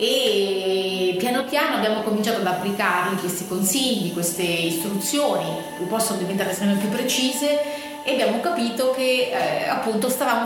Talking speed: 140 wpm